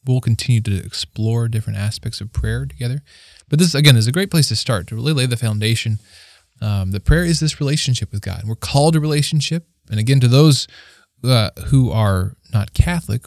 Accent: American